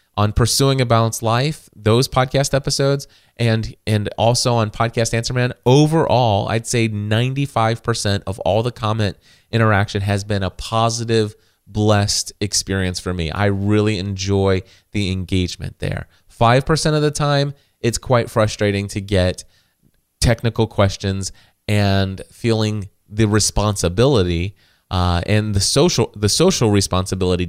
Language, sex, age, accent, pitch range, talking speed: English, male, 30-49, American, 100-120 Hz, 140 wpm